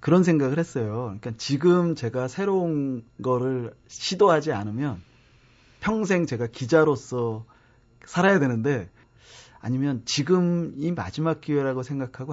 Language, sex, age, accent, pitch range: Korean, male, 30-49, native, 115-150 Hz